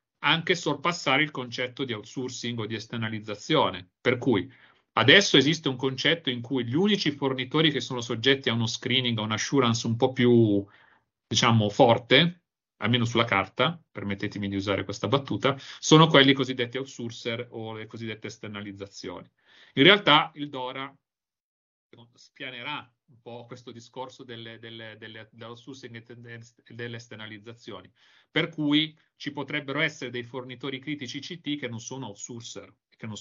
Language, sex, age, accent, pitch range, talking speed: Italian, male, 30-49, native, 110-135 Hz, 140 wpm